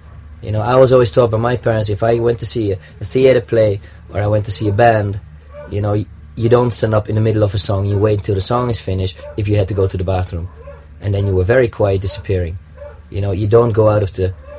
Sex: male